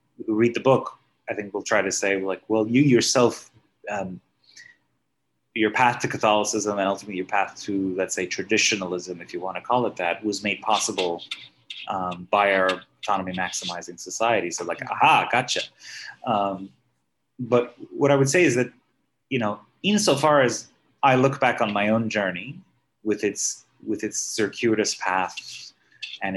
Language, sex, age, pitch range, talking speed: English, male, 30-49, 95-125 Hz, 160 wpm